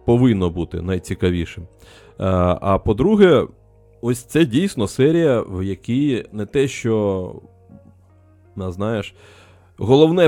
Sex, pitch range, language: male, 95-120 Hz, Ukrainian